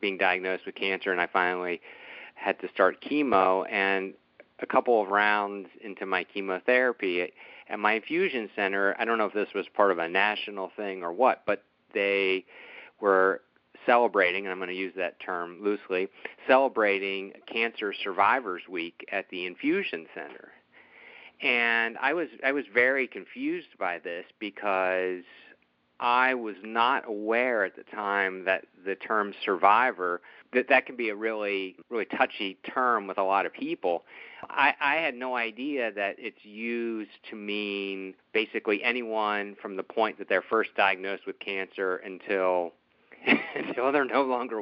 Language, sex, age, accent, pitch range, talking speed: English, male, 50-69, American, 95-125 Hz, 155 wpm